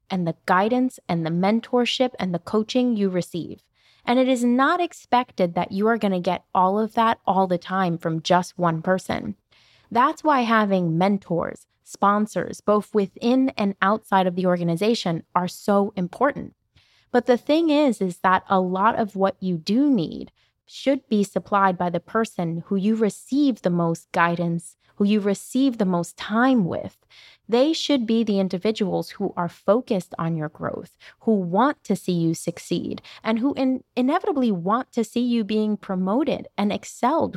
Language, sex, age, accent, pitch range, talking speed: English, female, 20-39, American, 180-245 Hz, 170 wpm